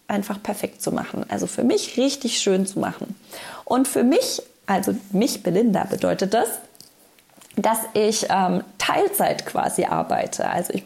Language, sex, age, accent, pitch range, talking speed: German, female, 20-39, German, 190-240 Hz, 150 wpm